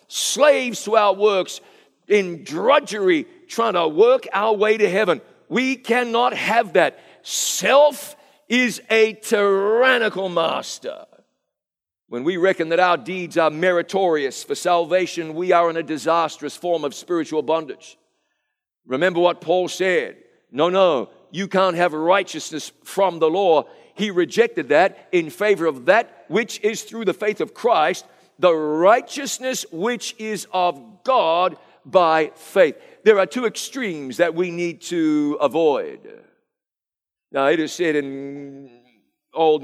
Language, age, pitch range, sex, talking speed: English, 50-69, 160-240 Hz, male, 140 wpm